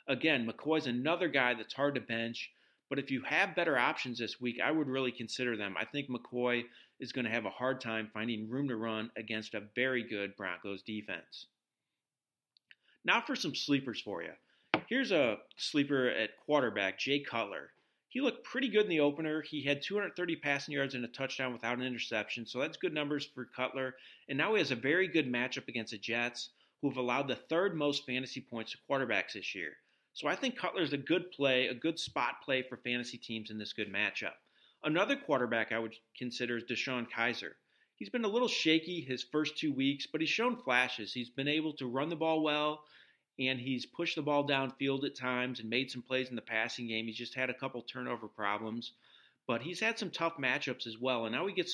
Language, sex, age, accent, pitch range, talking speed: English, male, 40-59, American, 120-150 Hz, 210 wpm